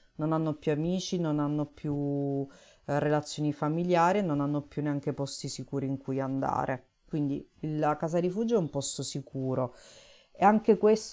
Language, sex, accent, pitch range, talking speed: Italian, female, native, 140-175 Hz, 160 wpm